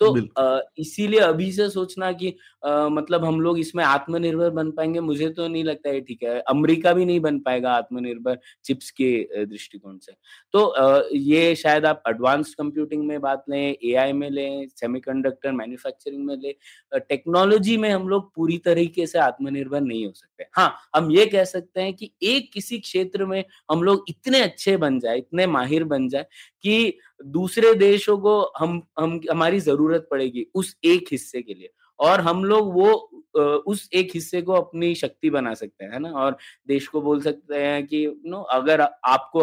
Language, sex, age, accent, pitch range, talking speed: Hindi, male, 20-39, native, 135-185 Hz, 175 wpm